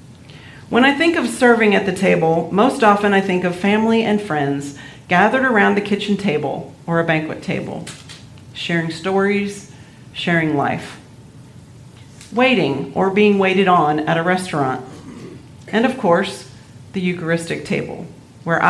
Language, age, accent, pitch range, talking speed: English, 40-59, American, 140-200 Hz, 140 wpm